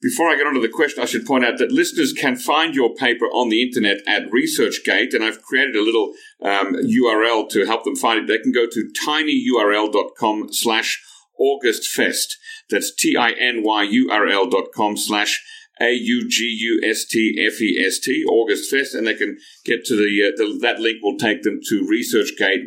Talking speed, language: 160 wpm, English